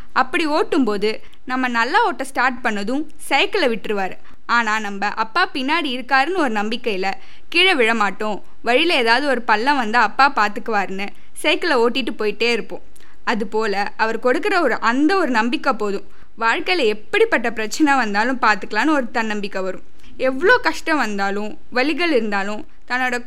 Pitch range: 220-300 Hz